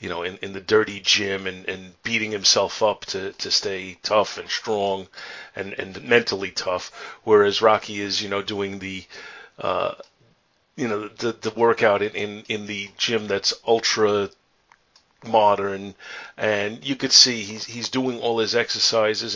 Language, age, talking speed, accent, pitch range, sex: English, 40-59, 165 wpm, American, 100-115 Hz, male